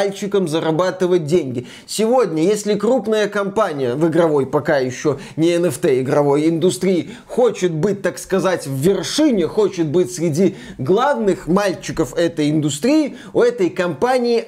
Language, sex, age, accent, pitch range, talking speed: Russian, male, 20-39, native, 175-230 Hz, 125 wpm